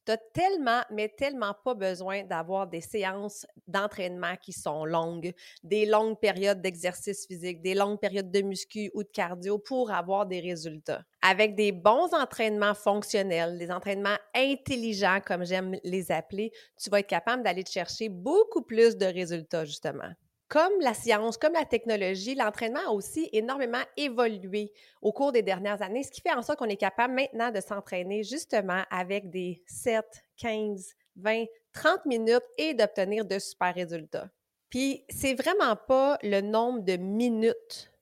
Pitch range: 190-240 Hz